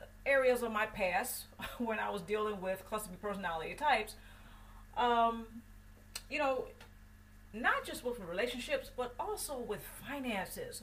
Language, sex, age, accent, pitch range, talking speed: English, female, 40-59, American, 205-275 Hz, 135 wpm